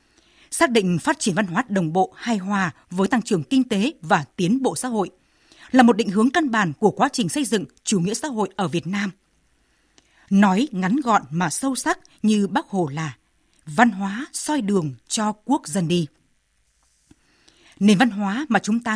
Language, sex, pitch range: Vietnamese, female, 185-250 Hz